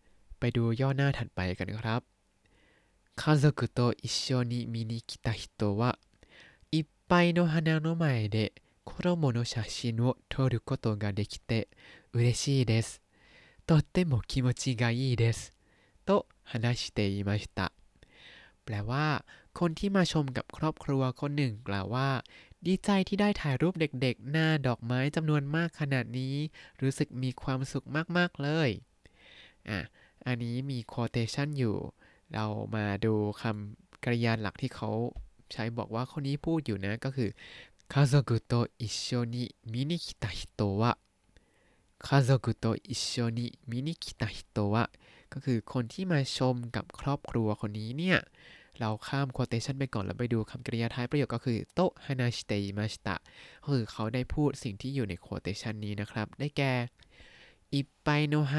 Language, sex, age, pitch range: Thai, male, 20-39, 110-140 Hz